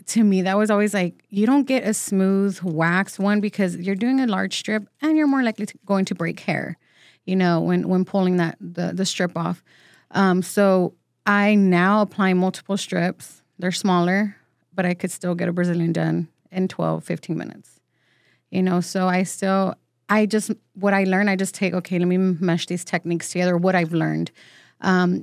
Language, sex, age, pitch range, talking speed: English, female, 30-49, 180-215 Hz, 195 wpm